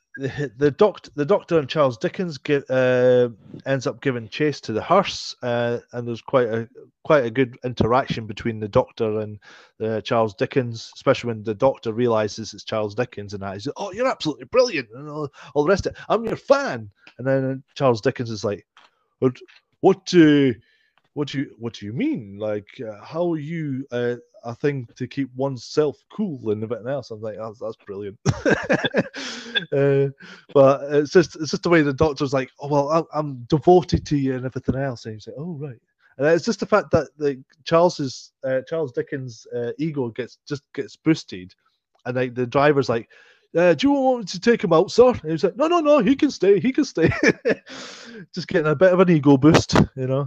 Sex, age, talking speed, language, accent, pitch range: male, 30-49, 210 wpm, English, British, 120-165 Hz